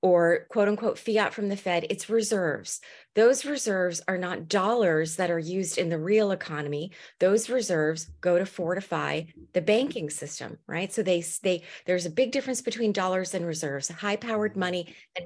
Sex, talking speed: female, 175 wpm